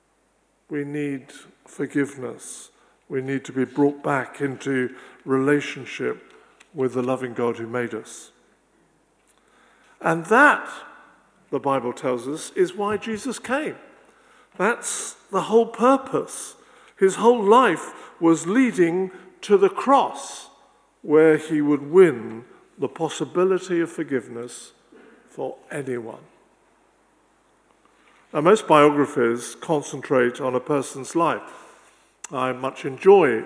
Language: English